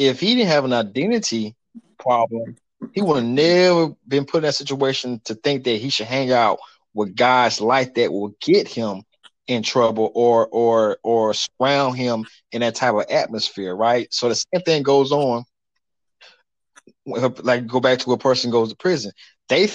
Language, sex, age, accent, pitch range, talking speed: English, male, 20-39, American, 115-140 Hz, 180 wpm